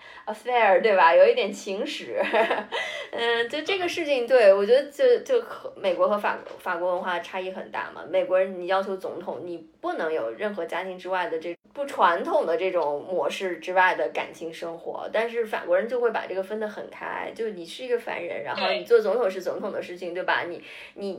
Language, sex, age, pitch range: Chinese, female, 20-39, 180-245 Hz